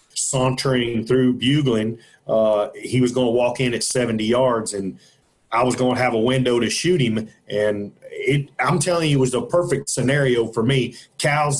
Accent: American